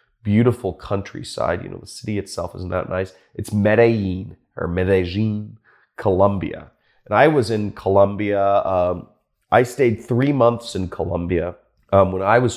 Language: English